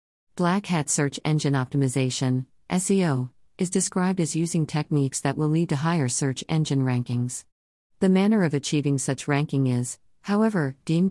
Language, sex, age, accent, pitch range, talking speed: English, female, 50-69, American, 125-160 Hz, 150 wpm